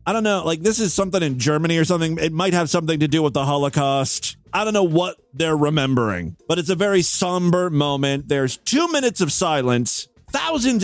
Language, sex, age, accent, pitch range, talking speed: English, male, 40-59, American, 140-225 Hz, 210 wpm